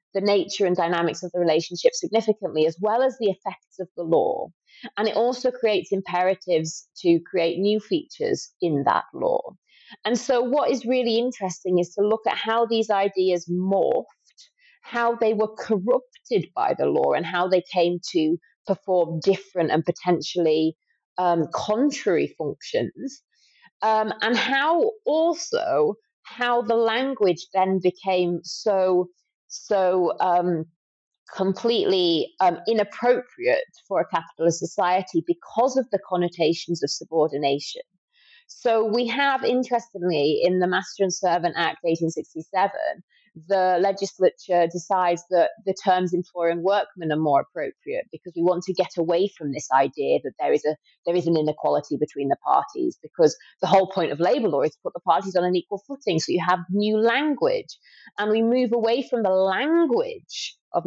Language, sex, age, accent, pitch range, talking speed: English, female, 30-49, British, 175-250 Hz, 155 wpm